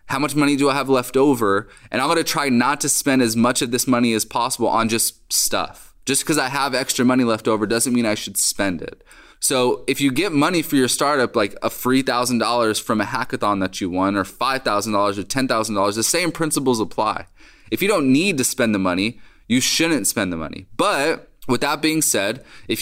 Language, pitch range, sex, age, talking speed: English, 115-140 Hz, male, 20-39, 225 wpm